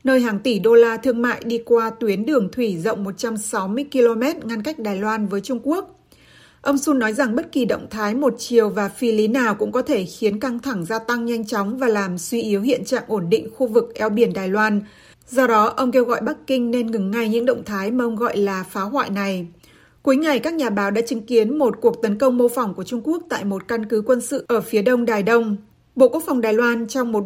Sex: female